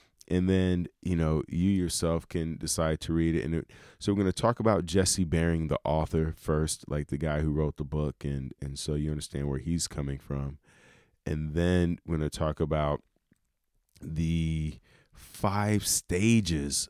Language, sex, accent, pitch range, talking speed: English, male, American, 75-85 Hz, 180 wpm